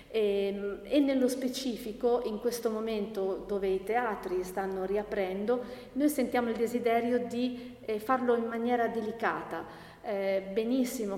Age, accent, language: 40-59, native, Italian